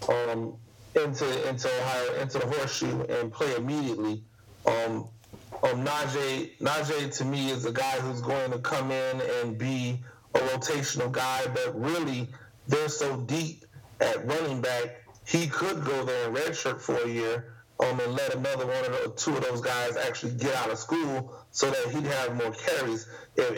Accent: American